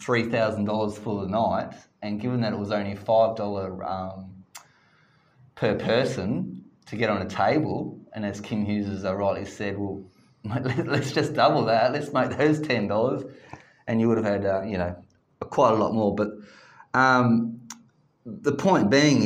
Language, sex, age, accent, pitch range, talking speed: English, male, 20-39, Australian, 105-140 Hz, 180 wpm